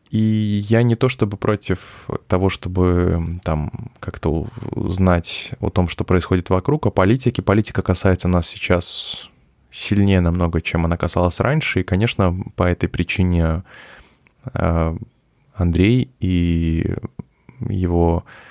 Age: 20-39